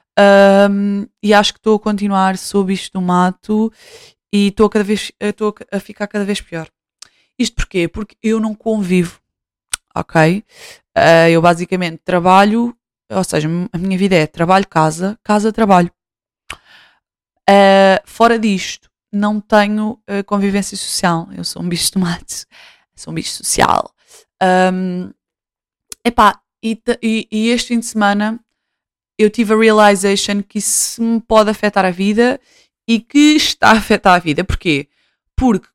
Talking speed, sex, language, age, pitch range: 140 wpm, female, Portuguese, 20-39, 185-220 Hz